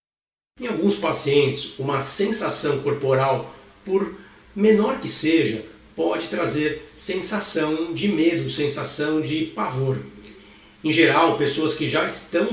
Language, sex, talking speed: Portuguese, male, 115 wpm